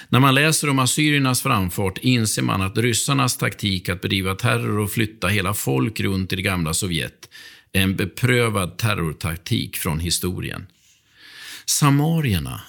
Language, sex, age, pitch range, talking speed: Swedish, male, 50-69, 100-130 Hz, 140 wpm